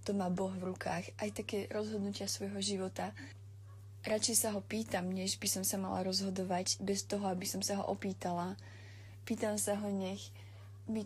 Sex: female